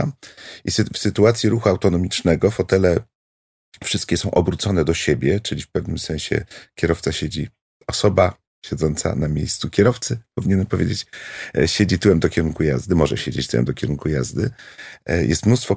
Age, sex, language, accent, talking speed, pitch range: 40-59, male, Polish, native, 140 wpm, 80-105 Hz